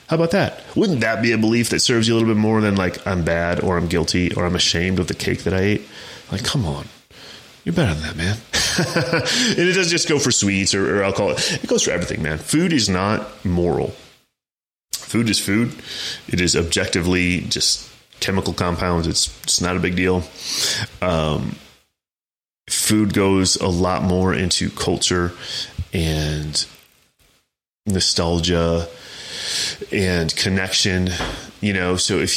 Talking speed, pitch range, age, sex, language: 165 wpm, 85-105 Hz, 30-49, male, English